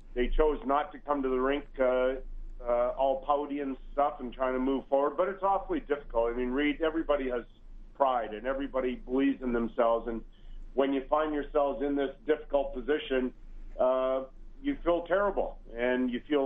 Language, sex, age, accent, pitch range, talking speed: English, male, 50-69, American, 130-150 Hz, 180 wpm